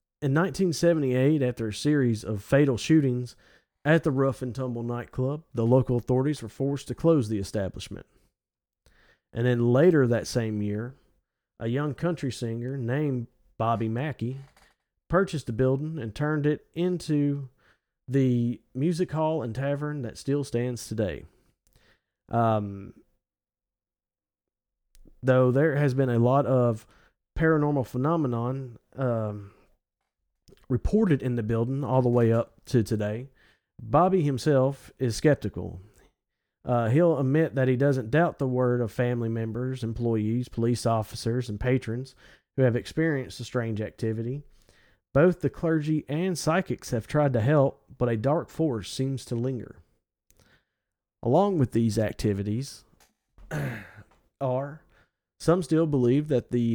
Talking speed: 135 wpm